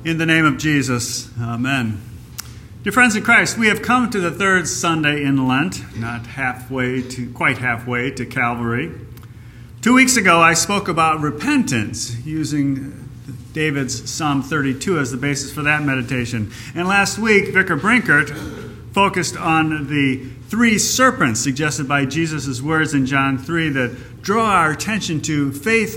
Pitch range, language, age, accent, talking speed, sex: 120-160 Hz, English, 50-69, American, 155 wpm, male